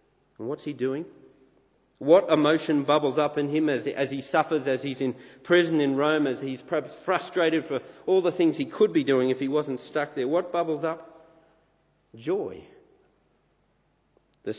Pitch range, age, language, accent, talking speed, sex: 130-160 Hz, 50-69, English, Australian, 175 wpm, male